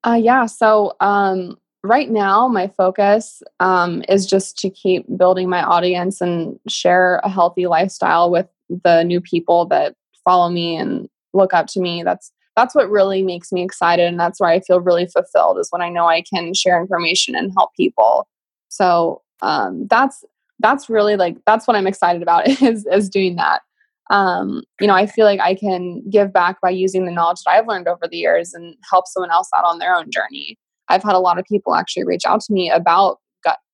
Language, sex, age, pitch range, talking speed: English, female, 20-39, 175-205 Hz, 205 wpm